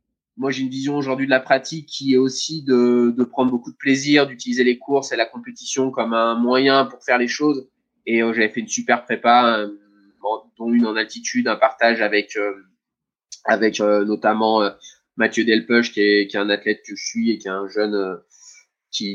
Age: 20-39